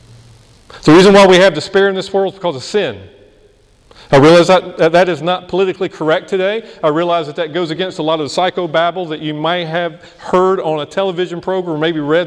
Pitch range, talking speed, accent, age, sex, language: 140-185 Hz, 220 wpm, American, 40-59, male, English